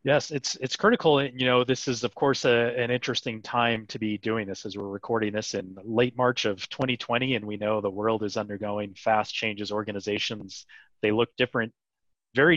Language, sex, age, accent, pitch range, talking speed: English, male, 30-49, American, 100-120 Hz, 200 wpm